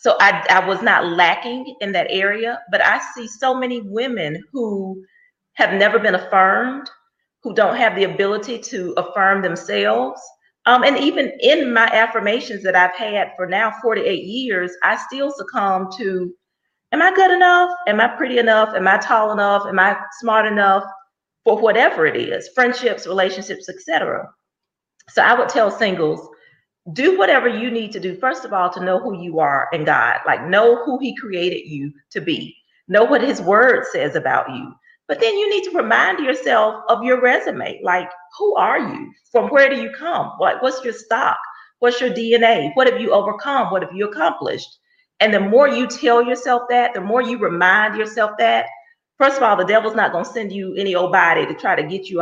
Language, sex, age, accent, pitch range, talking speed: English, female, 40-59, American, 195-260 Hz, 195 wpm